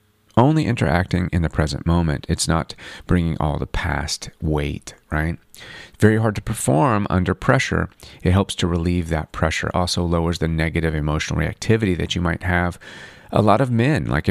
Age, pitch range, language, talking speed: 30-49, 80-100 Hz, English, 170 wpm